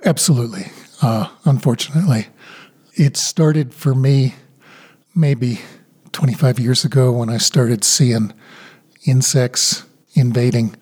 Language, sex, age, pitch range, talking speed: English, male, 50-69, 120-145 Hz, 95 wpm